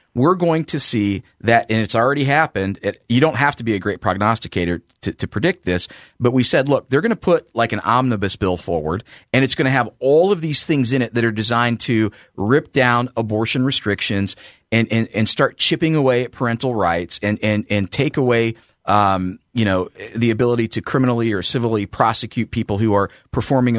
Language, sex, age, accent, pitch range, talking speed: English, male, 40-59, American, 110-160 Hz, 205 wpm